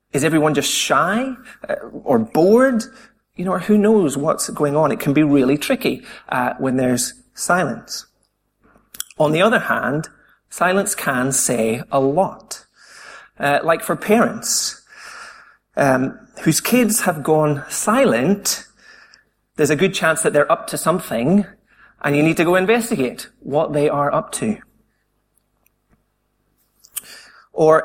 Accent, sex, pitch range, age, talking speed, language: British, male, 145-215 Hz, 30-49, 135 wpm, English